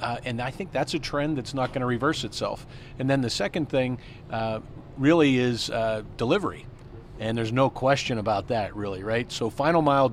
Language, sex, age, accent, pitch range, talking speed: English, male, 40-59, American, 115-135 Hz, 200 wpm